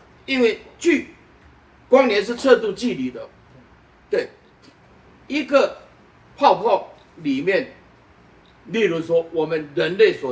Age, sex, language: 50-69, male, Chinese